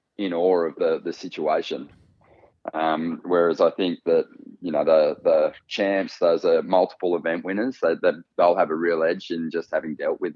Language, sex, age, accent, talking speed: English, male, 20-39, Australian, 190 wpm